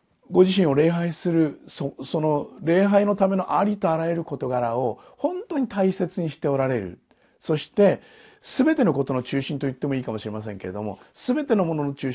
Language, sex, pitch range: Japanese, male, 125-185 Hz